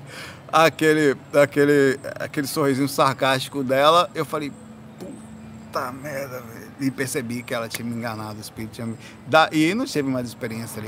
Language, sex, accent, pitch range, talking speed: Portuguese, male, Brazilian, 135-175 Hz, 160 wpm